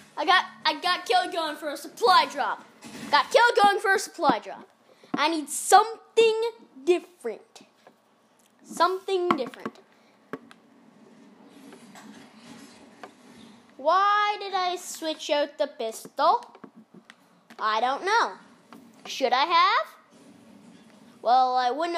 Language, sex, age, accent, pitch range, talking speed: English, female, 10-29, American, 235-335 Hz, 105 wpm